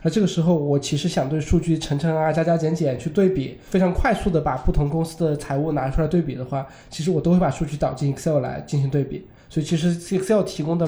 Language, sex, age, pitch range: Chinese, male, 20-39, 145-180 Hz